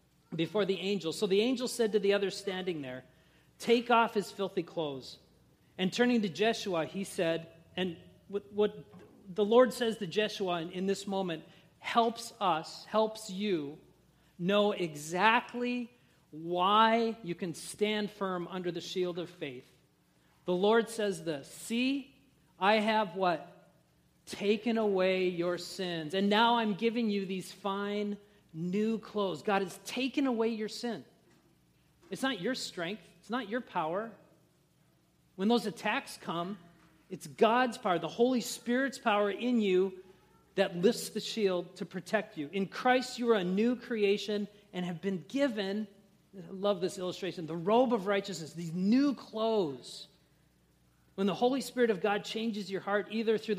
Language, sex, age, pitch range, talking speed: English, male, 40-59, 180-225 Hz, 155 wpm